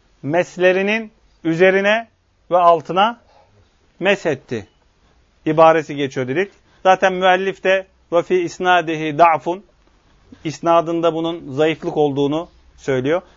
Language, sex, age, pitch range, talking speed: Turkish, male, 40-59, 155-190 Hz, 90 wpm